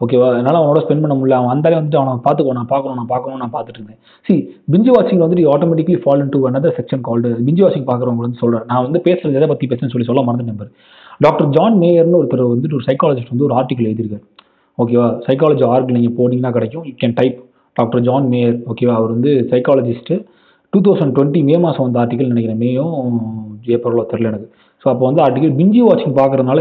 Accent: native